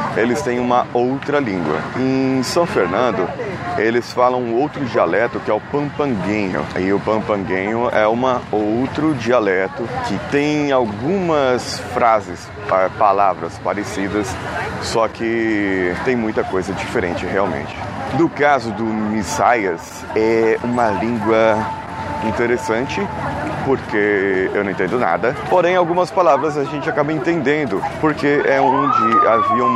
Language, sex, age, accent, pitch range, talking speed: Portuguese, male, 20-39, Brazilian, 105-150 Hz, 120 wpm